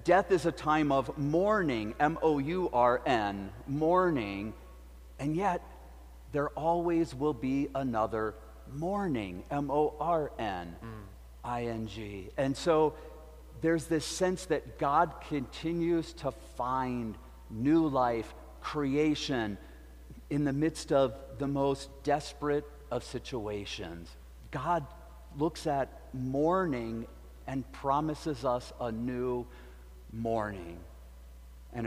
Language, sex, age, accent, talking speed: English, male, 50-69, American, 95 wpm